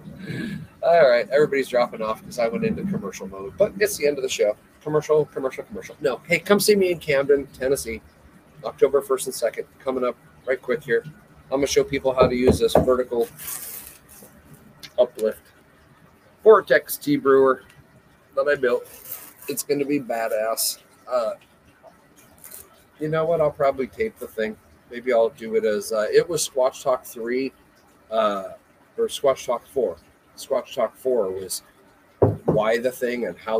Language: English